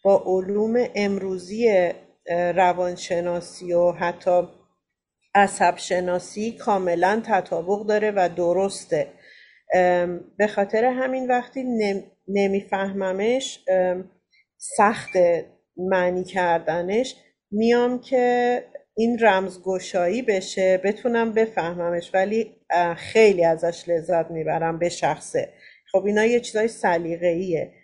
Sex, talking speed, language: female, 85 wpm, Persian